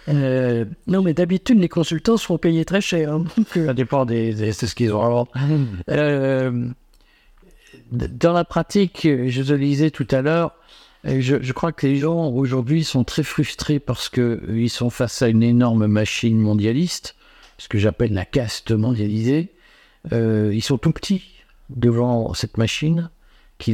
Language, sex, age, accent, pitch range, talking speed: French, male, 60-79, French, 115-150 Hz, 160 wpm